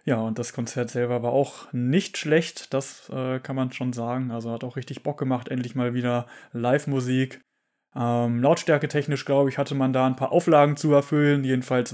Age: 20-39